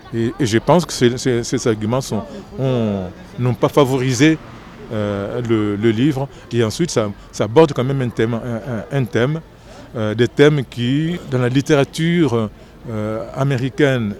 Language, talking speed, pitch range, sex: French, 140 wpm, 110-145 Hz, male